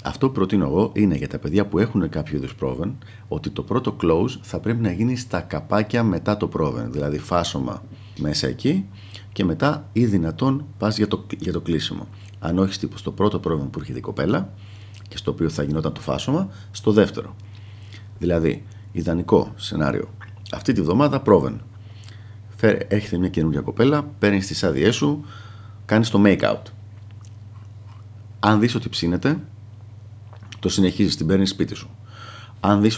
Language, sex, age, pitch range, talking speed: Greek, male, 50-69, 90-110 Hz, 160 wpm